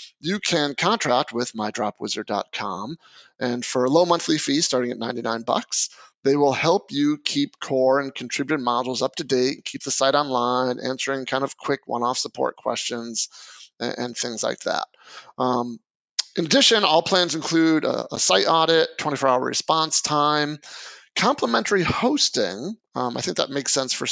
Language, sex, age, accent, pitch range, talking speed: English, male, 30-49, American, 125-160 Hz, 160 wpm